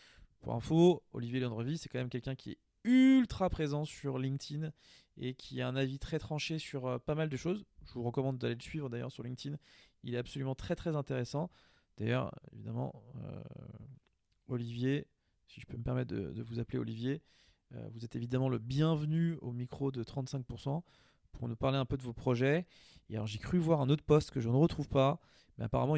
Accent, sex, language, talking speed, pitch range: French, male, French, 200 wpm, 120-150 Hz